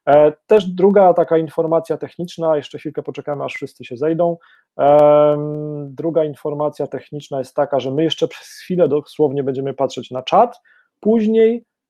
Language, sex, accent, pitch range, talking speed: Polish, male, native, 140-170 Hz, 140 wpm